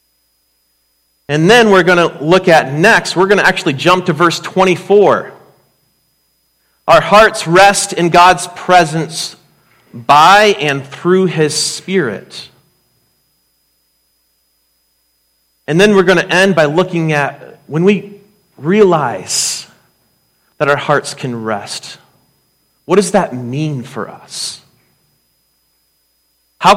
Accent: American